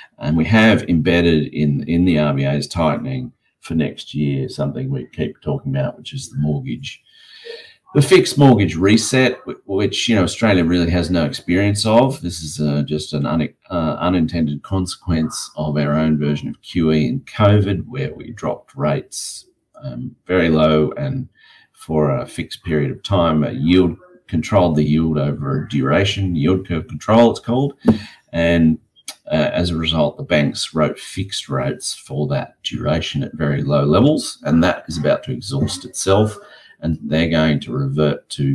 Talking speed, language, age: 170 wpm, English, 40-59